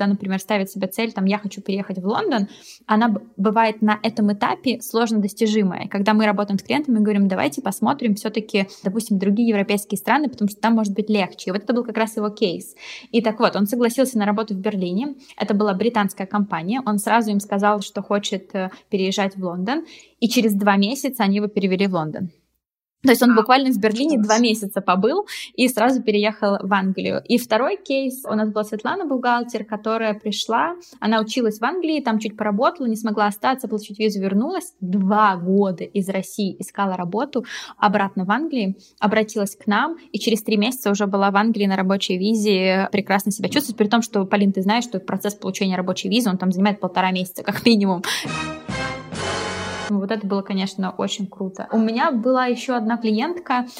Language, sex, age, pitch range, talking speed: Russian, female, 20-39, 200-230 Hz, 190 wpm